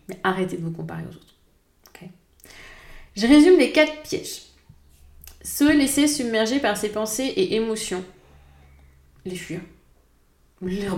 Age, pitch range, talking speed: 30-49, 185-230 Hz, 130 wpm